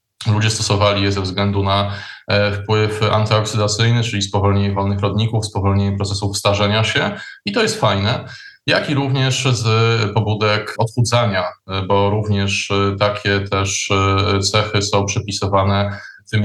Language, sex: Polish, male